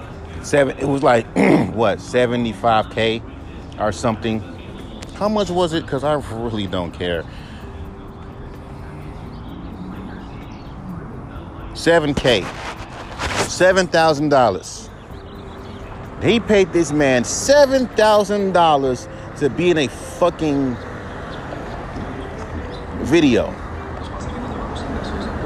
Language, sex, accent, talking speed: English, male, American, 85 wpm